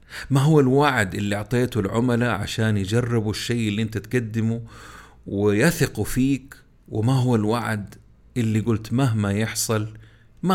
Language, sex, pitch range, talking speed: Arabic, male, 100-120 Hz, 125 wpm